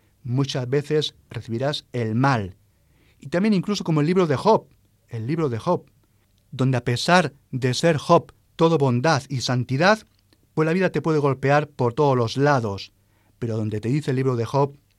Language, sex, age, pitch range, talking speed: Spanish, male, 40-59, 115-175 Hz, 180 wpm